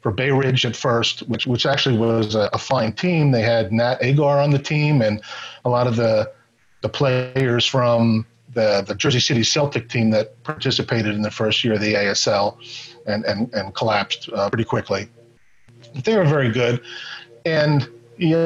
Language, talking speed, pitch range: English, 185 wpm, 115-135 Hz